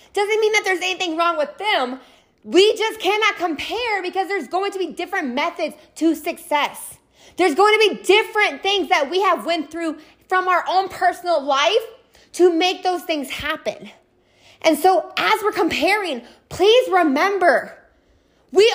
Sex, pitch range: female, 340-415 Hz